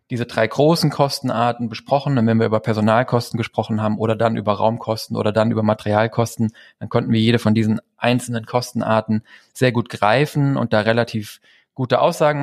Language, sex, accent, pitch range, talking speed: German, male, German, 110-125 Hz, 175 wpm